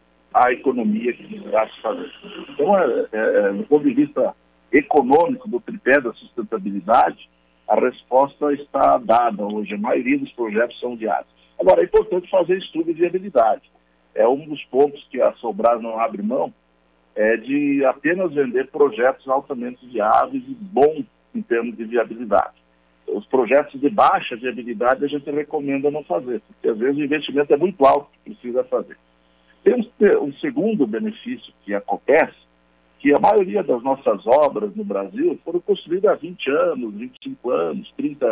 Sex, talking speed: male, 160 wpm